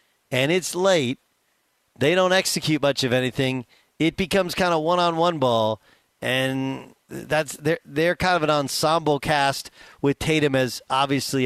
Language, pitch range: English, 120-155 Hz